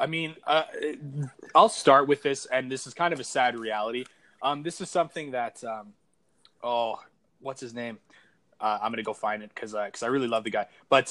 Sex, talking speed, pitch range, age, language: male, 210 wpm, 110-135 Hz, 20-39, English